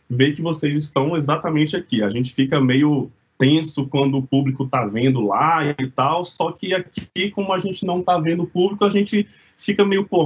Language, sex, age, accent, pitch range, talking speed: Portuguese, male, 20-39, Brazilian, 130-175 Hz, 205 wpm